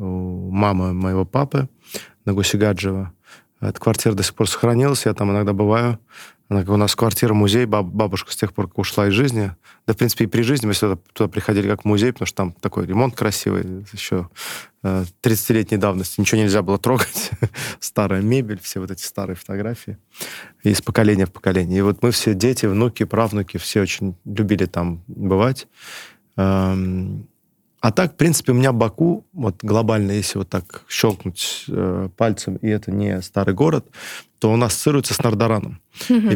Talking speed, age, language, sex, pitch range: 170 wpm, 20-39, Russian, male, 100-115 Hz